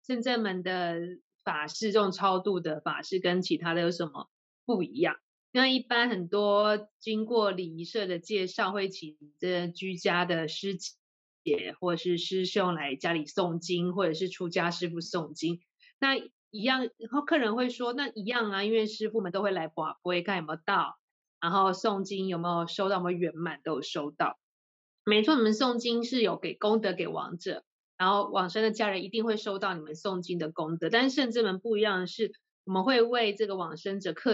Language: Chinese